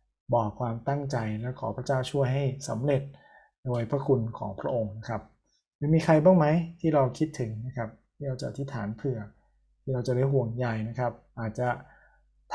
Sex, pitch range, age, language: male, 115-135 Hz, 20-39, Thai